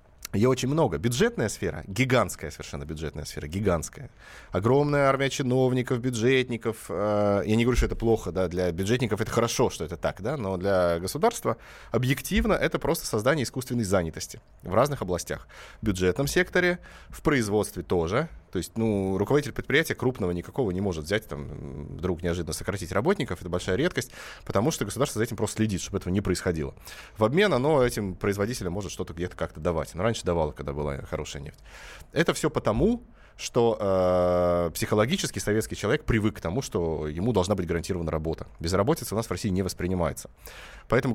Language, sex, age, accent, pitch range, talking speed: Russian, male, 20-39, native, 90-125 Hz, 170 wpm